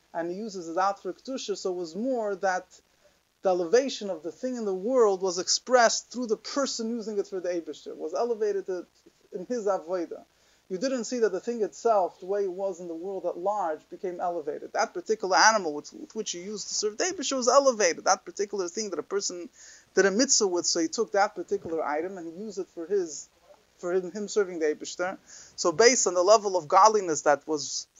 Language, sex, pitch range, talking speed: English, male, 170-240 Hz, 220 wpm